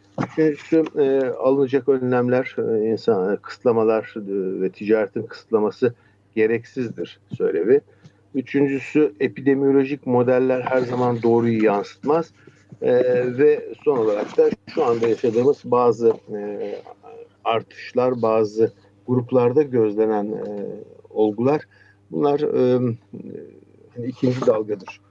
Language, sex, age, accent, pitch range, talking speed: Turkish, male, 50-69, native, 110-135 Hz, 100 wpm